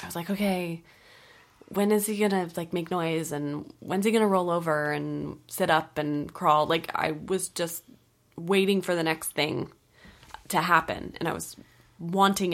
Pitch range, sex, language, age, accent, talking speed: 150-175 Hz, female, English, 20-39, American, 185 wpm